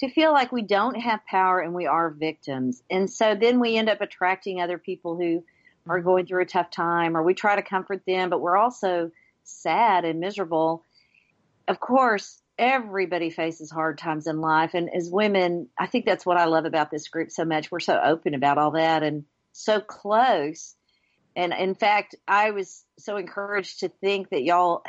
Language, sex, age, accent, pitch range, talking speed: English, female, 50-69, American, 170-220 Hz, 195 wpm